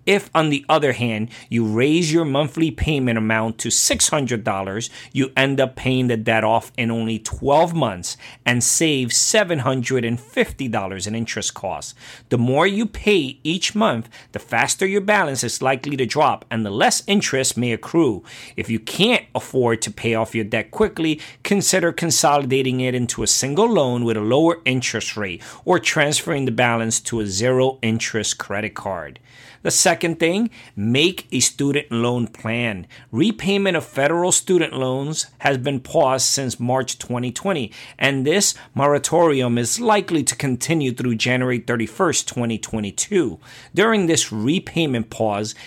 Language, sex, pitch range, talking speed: English, male, 115-155 Hz, 150 wpm